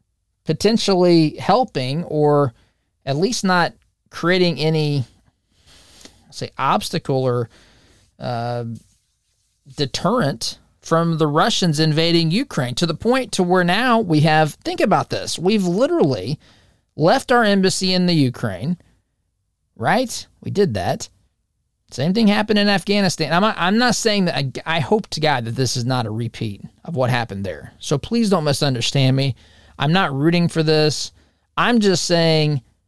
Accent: American